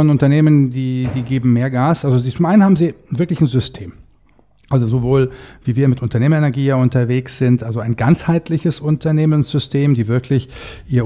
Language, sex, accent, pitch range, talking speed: German, male, German, 115-135 Hz, 165 wpm